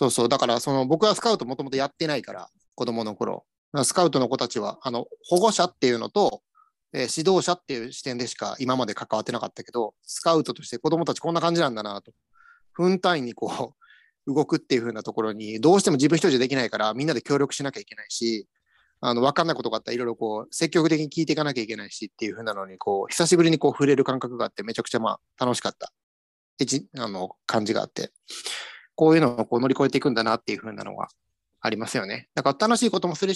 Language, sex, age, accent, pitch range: Japanese, male, 30-49, native, 115-165 Hz